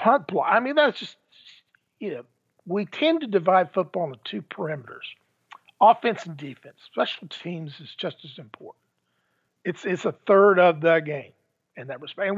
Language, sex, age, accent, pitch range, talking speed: English, male, 50-69, American, 155-200 Hz, 165 wpm